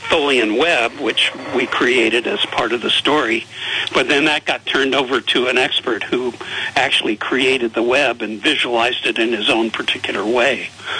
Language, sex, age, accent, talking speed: English, male, 60-79, American, 175 wpm